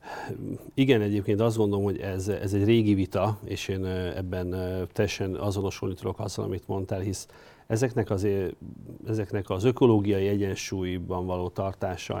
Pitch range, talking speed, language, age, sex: 95-105 Hz, 140 wpm, Hungarian, 40-59, male